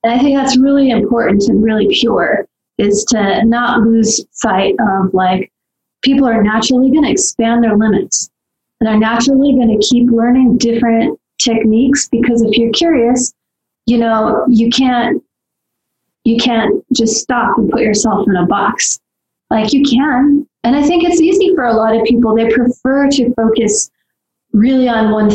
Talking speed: 170 wpm